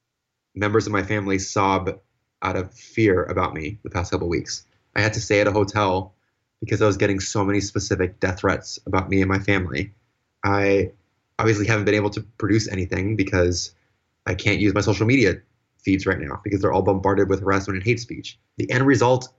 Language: English